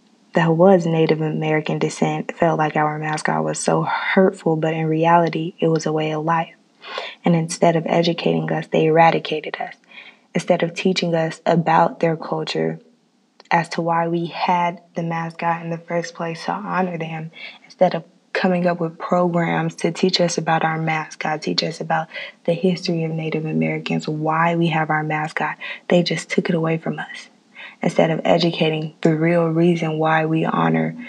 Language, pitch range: English, 155-185 Hz